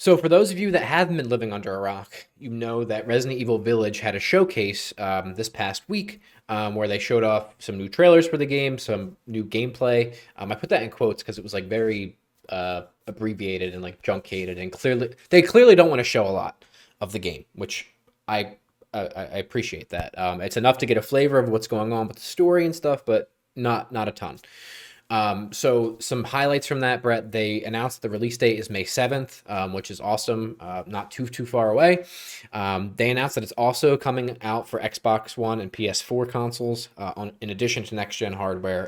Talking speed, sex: 215 wpm, male